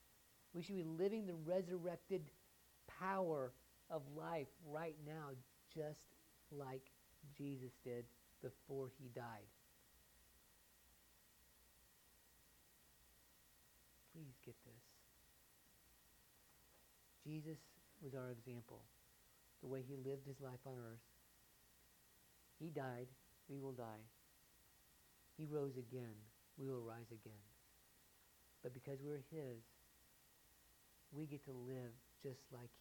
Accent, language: American, English